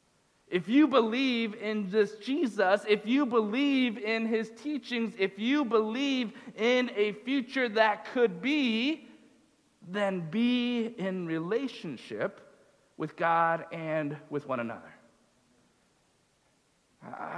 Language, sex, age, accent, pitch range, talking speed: English, male, 40-59, American, 170-230 Hz, 110 wpm